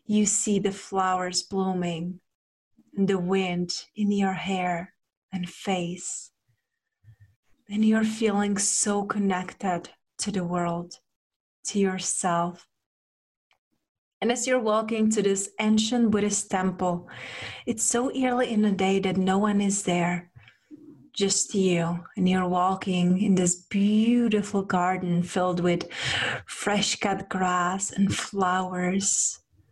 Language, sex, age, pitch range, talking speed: English, female, 30-49, 180-210 Hz, 115 wpm